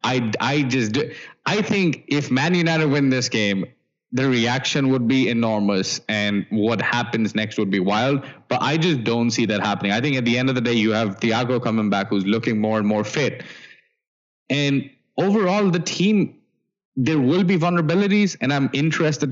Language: English